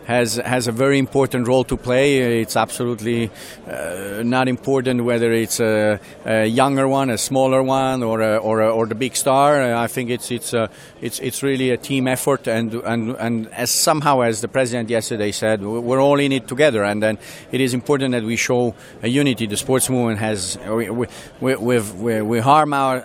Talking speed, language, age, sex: 205 wpm, English, 40-59, male